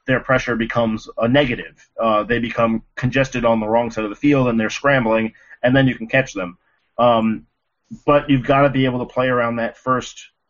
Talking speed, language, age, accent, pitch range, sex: 210 wpm, English, 30-49, American, 115-130 Hz, male